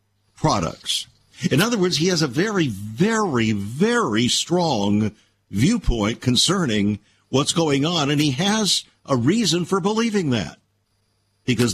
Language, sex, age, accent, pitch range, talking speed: English, male, 50-69, American, 105-155 Hz, 130 wpm